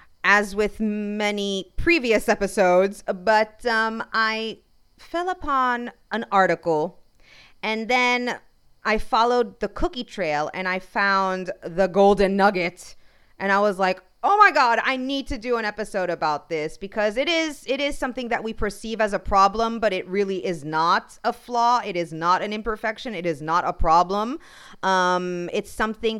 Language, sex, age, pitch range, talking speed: English, female, 30-49, 180-235 Hz, 165 wpm